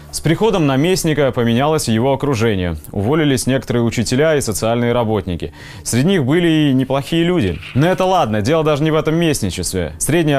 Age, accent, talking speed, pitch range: 20-39, native, 160 wpm, 115-150 Hz